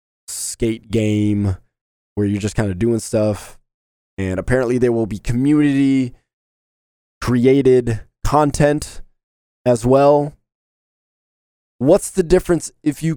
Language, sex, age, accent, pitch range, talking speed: English, male, 20-39, American, 110-155 Hz, 110 wpm